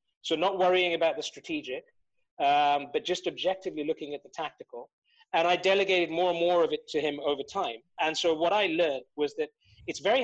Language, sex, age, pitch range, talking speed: English, male, 30-49, 150-200 Hz, 205 wpm